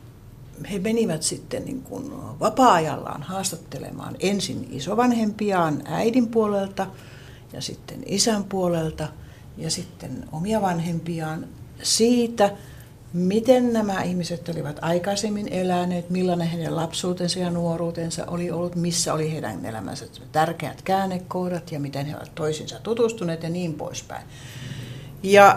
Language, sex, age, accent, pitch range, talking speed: Finnish, female, 60-79, native, 135-180 Hz, 115 wpm